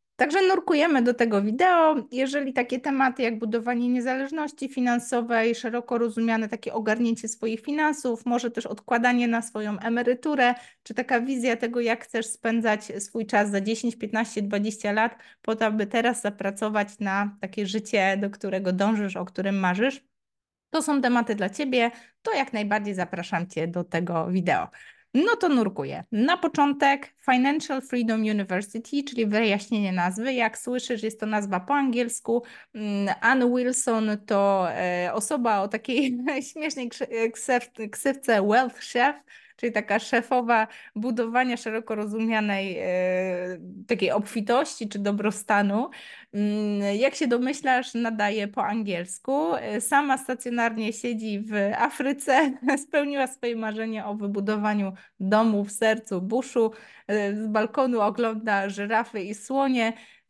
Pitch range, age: 205-250 Hz, 20-39